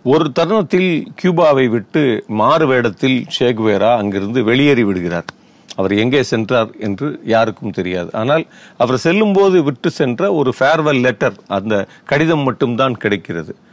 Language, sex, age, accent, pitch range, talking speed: Tamil, male, 40-59, native, 115-160 Hz, 120 wpm